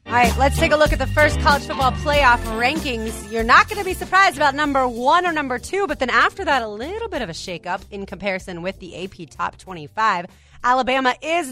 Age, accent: 30-49, American